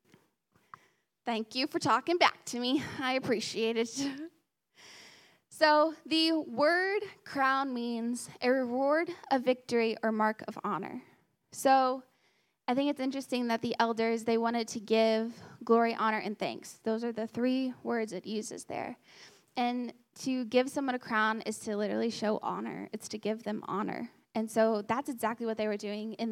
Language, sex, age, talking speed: English, female, 10-29, 165 wpm